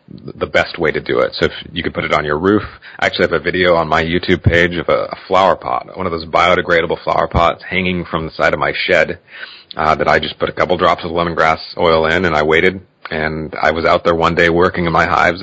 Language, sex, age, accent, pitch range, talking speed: English, male, 30-49, American, 80-90 Hz, 265 wpm